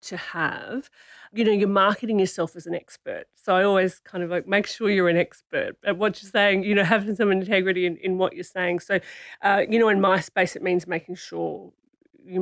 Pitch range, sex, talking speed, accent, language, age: 170-200 Hz, female, 225 wpm, Australian, English, 40-59